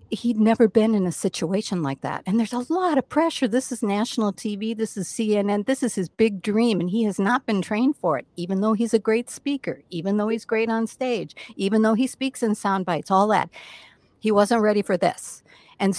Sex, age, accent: female, 60-79, American